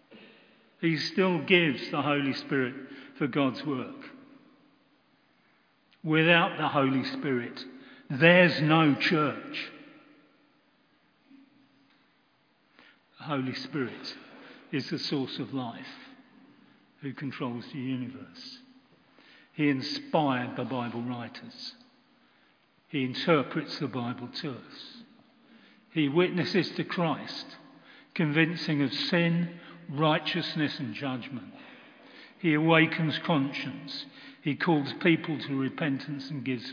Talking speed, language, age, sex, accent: 95 wpm, English, 50-69, male, British